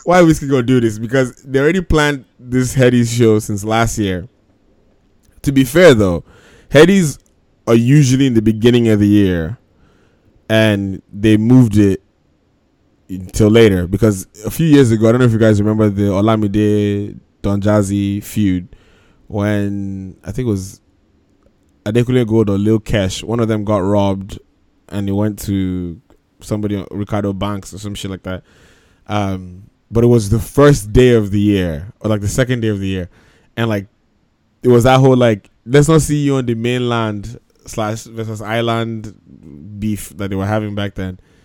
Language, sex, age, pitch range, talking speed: English, male, 20-39, 100-120 Hz, 175 wpm